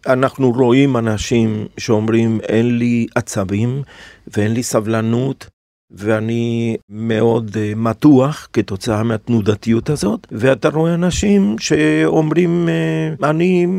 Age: 40-59